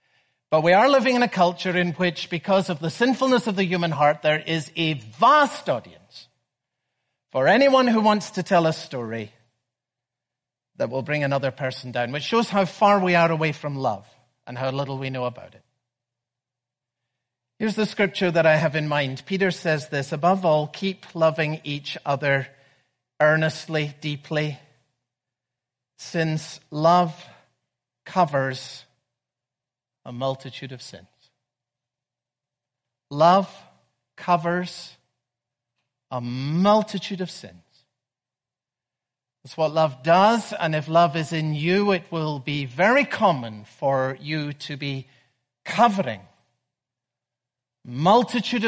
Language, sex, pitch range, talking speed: English, male, 125-175 Hz, 130 wpm